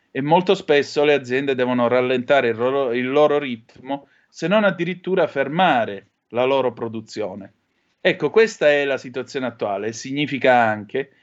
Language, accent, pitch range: Italian, native, 115-150 Hz